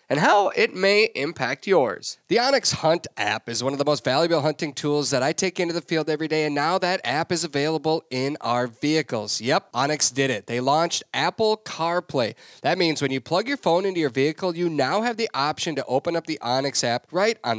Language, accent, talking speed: English, American, 225 wpm